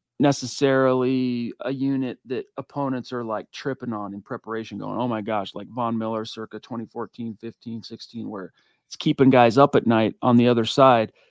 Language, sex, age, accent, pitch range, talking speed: English, male, 40-59, American, 120-145 Hz, 175 wpm